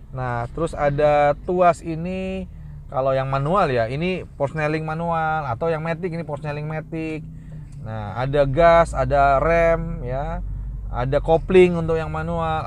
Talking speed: 135 wpm